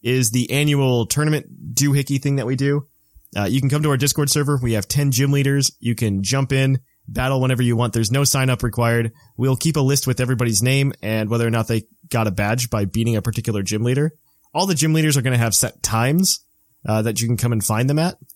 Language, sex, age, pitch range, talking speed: English, male, 30-49, 115-140 Hz, 245 wpm